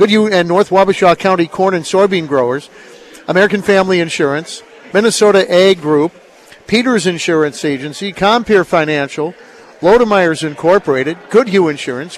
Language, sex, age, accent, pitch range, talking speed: English, male, 50-69, American, 160-205 Hz, 120 wpm